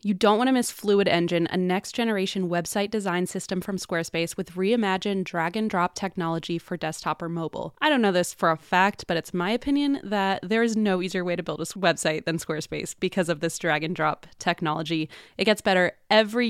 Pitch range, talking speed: 175-210 Hz, 215 wpm